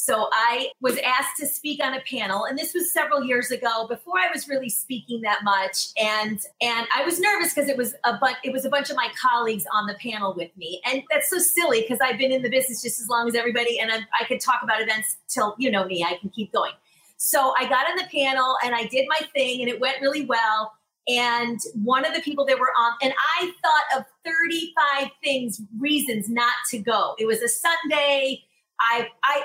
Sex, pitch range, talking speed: female, 235-280 Hz, 230 wpm